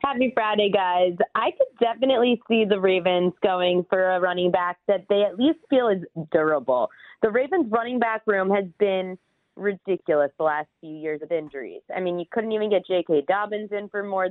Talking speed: 195 wpm